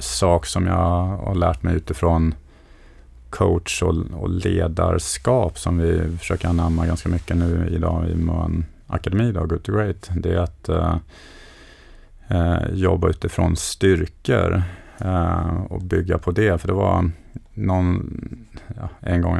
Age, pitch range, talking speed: 30-49, 80-90 Hz, 135 wpm